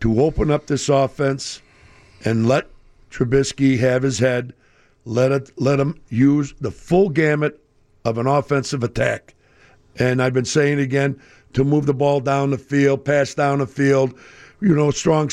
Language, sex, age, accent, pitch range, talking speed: English, male, 60-79, American, 120-145 Hz, 165 wpm